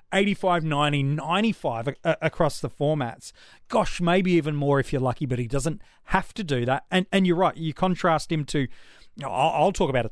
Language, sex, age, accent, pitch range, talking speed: English, male, 30-49, Australian, 140-180 Hz, 195 wpm